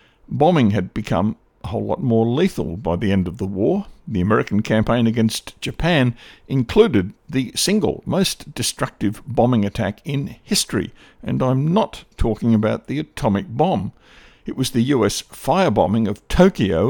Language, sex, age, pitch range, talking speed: English, male, 60-79, 105-140 Hz, 155 wpm